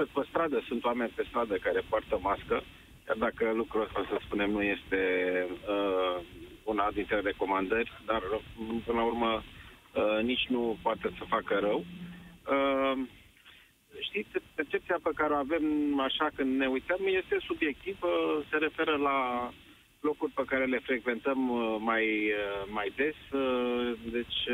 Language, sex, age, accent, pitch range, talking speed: Romanian, male, 40-59, native, 110-140 Hz, 145 wpm